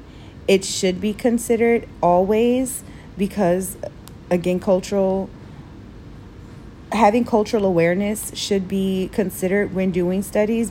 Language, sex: English, female